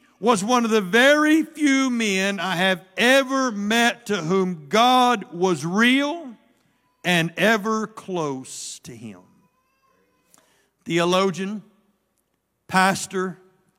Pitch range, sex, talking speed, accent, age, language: 185-240 Hz, male, 100 wpm, American, 60-79, English